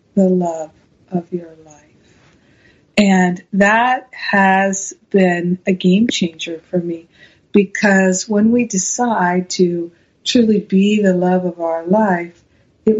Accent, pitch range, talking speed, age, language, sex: American, 180-215 Hz, 125 wpm, 50-69, English, female